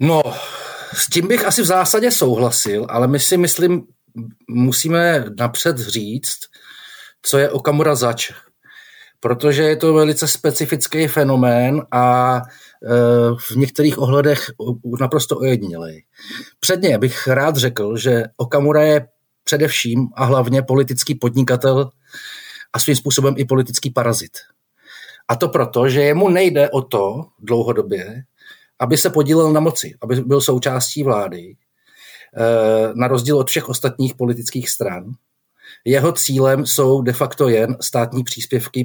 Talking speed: 125 wpm